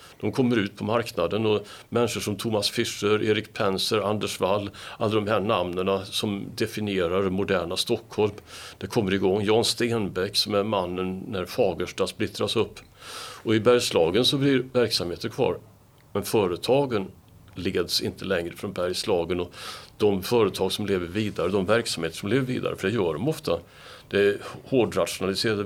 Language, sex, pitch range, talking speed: Swedish, male, 95-110 Hz, 160 wpm